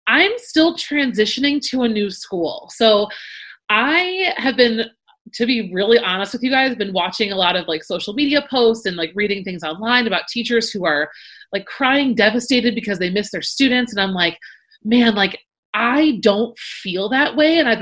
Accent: American